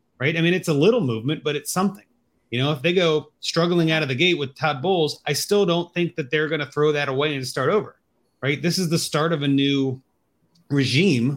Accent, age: American, 30-49